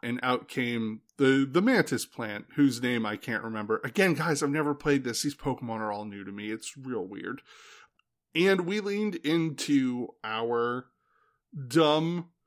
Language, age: English, 20-39